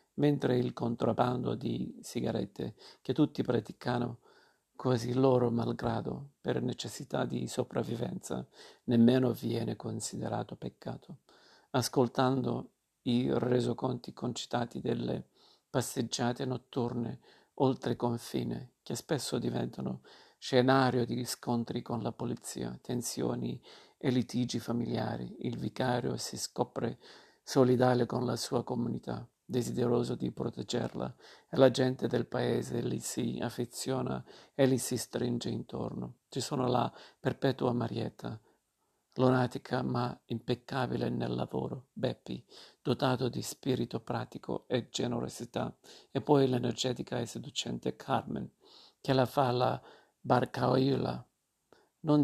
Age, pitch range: 50-69, 110-130 Hz